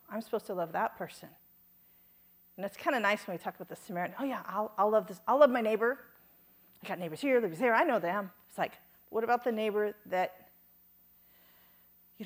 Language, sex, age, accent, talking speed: English, female, 50-69, American, 215 wpm